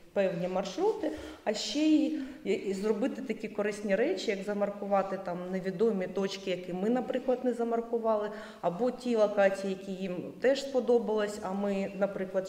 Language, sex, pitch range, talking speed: Ukrainian, female, 190-230 Hz, 145 wpm